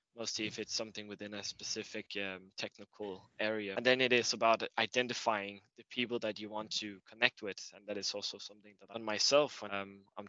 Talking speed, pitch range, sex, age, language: 190 wpm, 105-120 Hz, male, 20-39, English